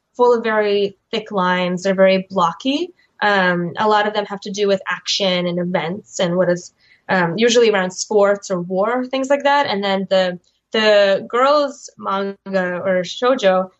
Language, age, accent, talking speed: English, 10-29, American, 175 wpm